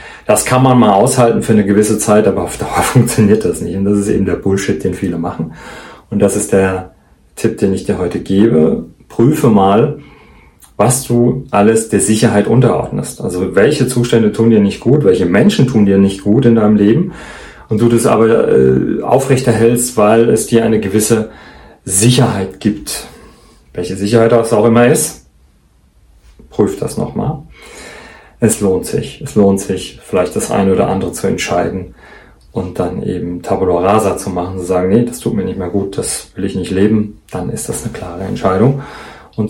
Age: 40-59